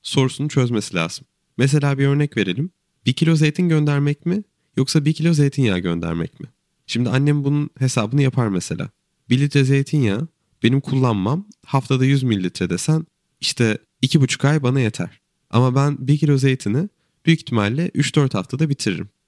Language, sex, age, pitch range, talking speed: Turkish, male, 30-49, 115-145 Hz, 150 wpm